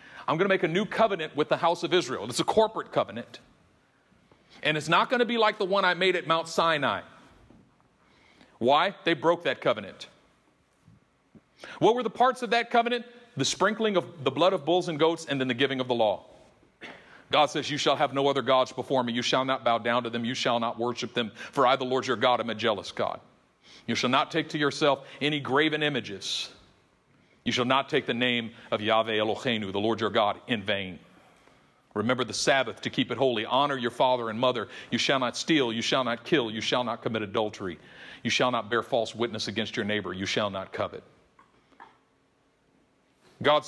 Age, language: 40-59, English